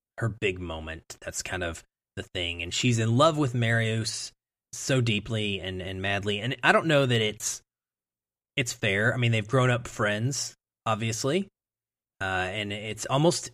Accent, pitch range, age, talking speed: American, 105-130 Hz, 20-39, 170 wpm